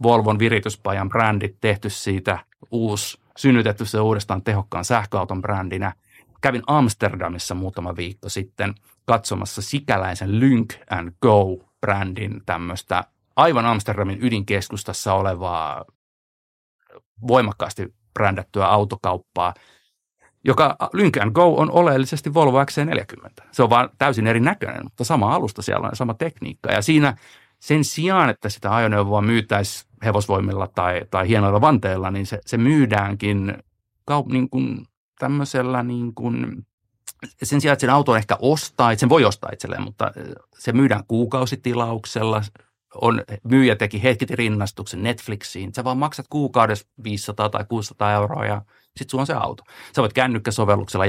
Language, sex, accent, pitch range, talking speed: Finnish, male, native, 100-125 Hz, 125 wpm